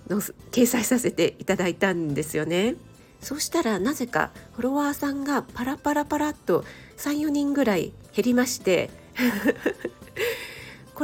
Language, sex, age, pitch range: Japanese, female, 40-59, 190-285 Hz